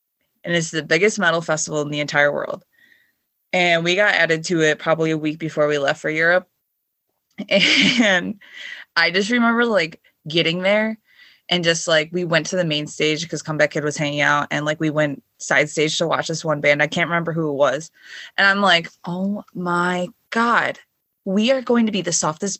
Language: English